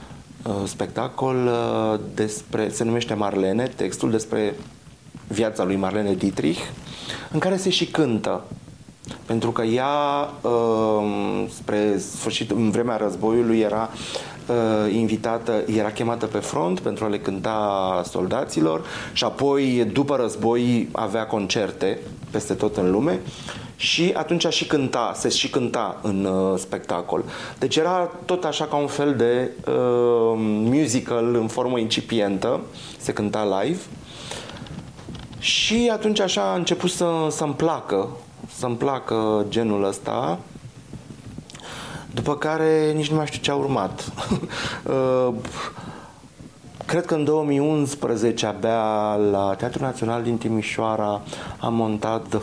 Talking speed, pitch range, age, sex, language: 130 wpm, 110-140 Hz, 30-49, male, Romanian